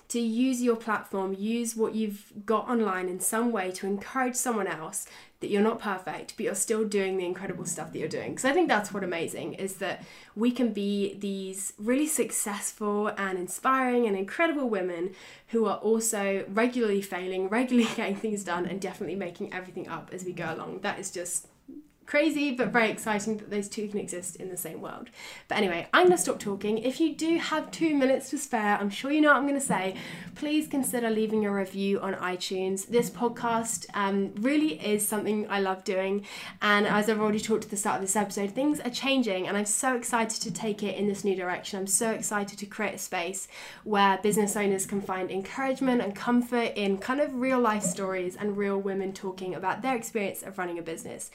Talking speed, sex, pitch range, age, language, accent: 210 wpm, female, 195-245 Hz, 10-29, English, British